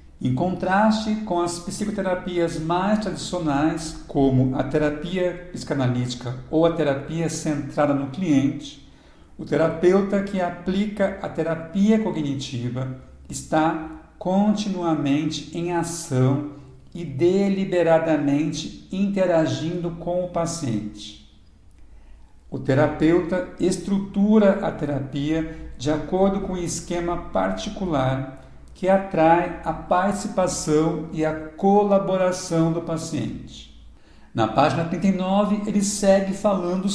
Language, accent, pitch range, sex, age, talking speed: Portuguese, Brazilian, 145-185 Hz, male, 60-79, 95 wpm